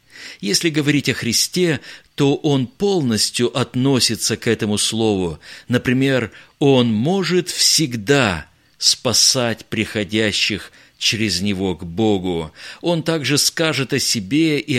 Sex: male